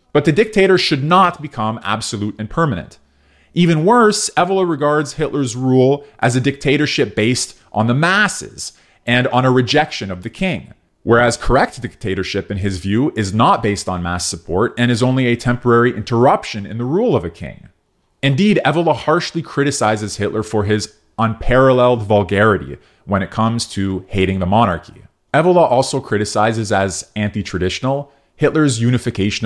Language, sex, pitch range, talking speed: English, male, 95-130 Hz, 155 wpm